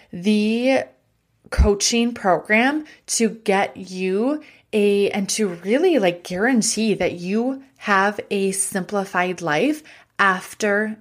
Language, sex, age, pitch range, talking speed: English, female, 30-49, 180-215 Hz, 105 wpm